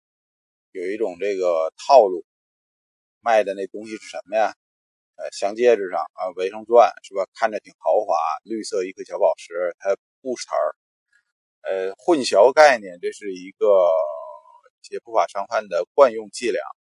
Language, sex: Chinese, male